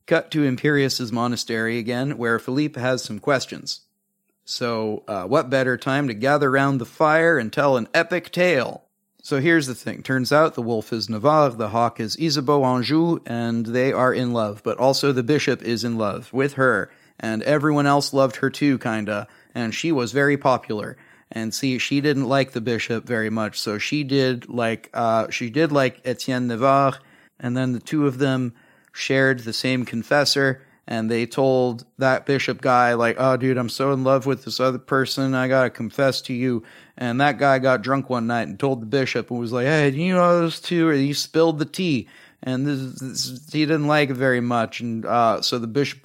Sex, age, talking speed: male, 30-49, 205 wpm